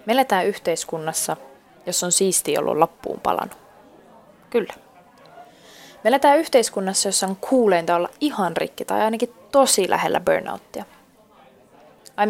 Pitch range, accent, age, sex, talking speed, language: 175-250 Hz, native, 20-39, female, 110 wpm, Finnish